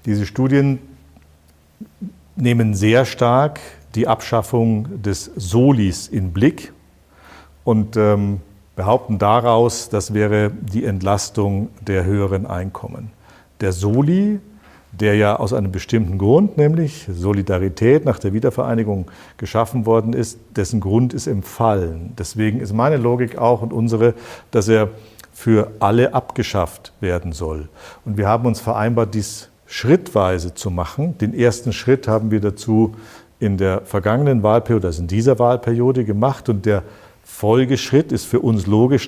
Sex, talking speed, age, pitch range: male, 135 wpm, 50-69, 100-120 Hz